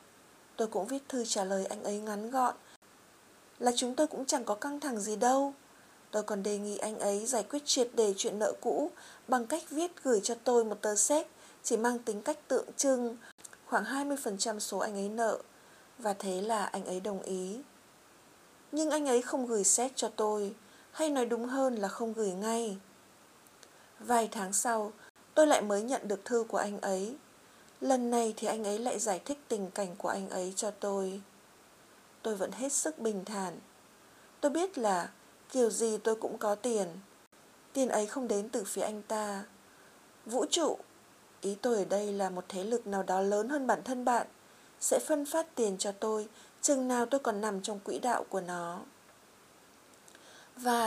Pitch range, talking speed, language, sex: 205-260 Hz, 190 wpm, Vietnamese, female